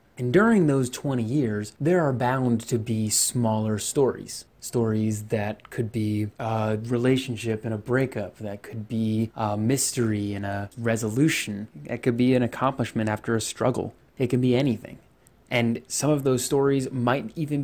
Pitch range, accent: 115-135 Hz, American